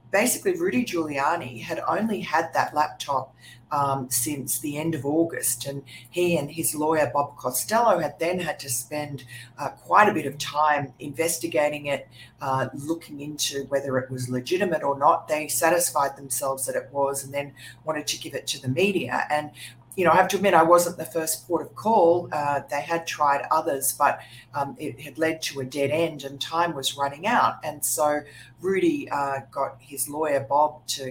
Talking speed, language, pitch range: 190 wpm, English, 130-150 Hz